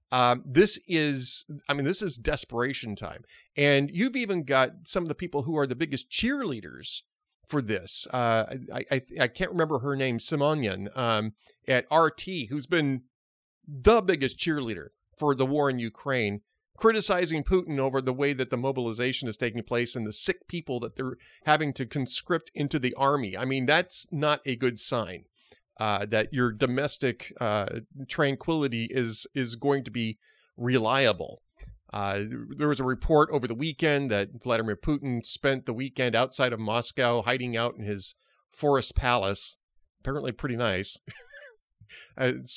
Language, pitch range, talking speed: English, 115-145 Hz, 165 wpm